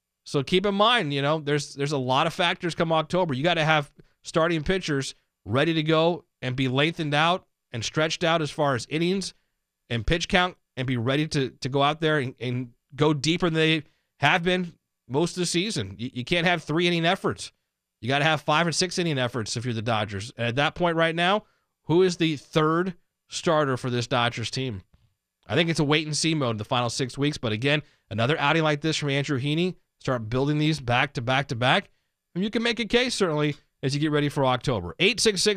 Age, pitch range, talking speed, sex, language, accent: 30-49, 130-165 Hz, 225 wpm, male, English, American